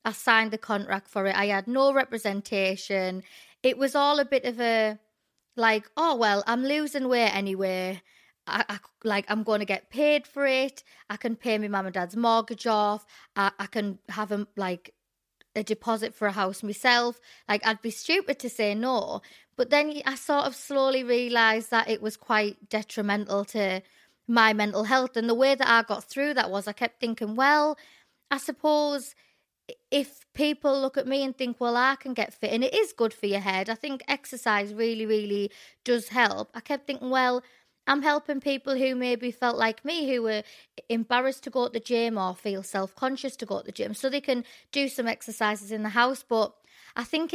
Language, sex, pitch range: English, female, 210-265 Hz